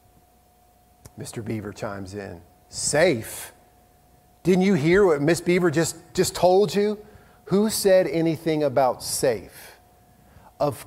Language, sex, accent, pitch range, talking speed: English, male, American, 115-150 Hz, 115 wpm